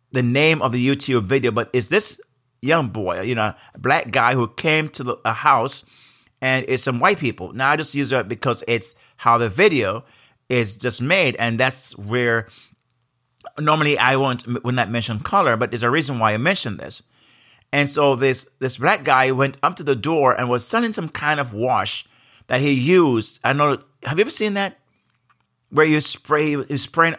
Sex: male